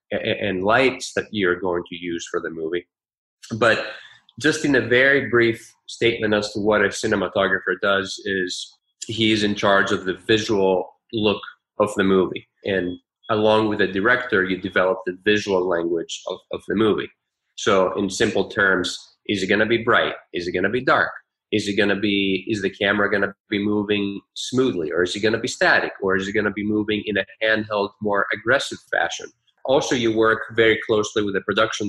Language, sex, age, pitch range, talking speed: English, male, 30-49, 95-110 Hz, 185 wpm